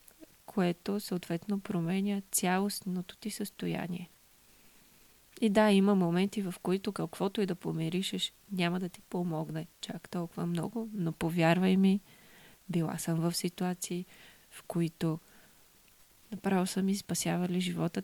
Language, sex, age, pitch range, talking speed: English, female, 20-39, 175-200 Hz, 115 wpm